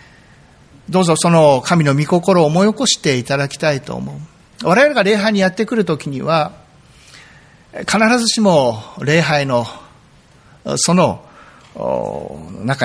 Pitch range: 135-180 Hz